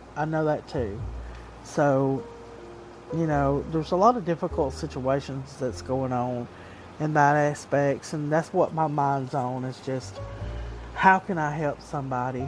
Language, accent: English, American